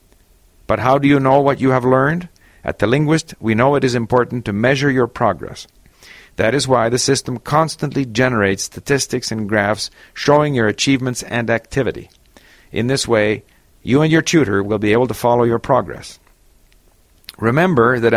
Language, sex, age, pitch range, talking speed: English, male, 50-69, 105-140 Hz, 170 wpm